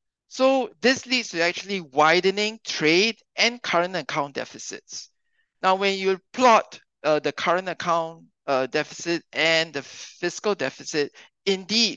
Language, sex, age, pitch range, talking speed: English, male, 50-69, 150-200 Hz, 130 wpm